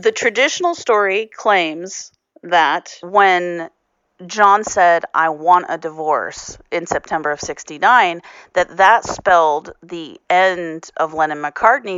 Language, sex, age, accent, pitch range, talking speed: English, female, 40-59, American, 160-195 Hz, 115 wpm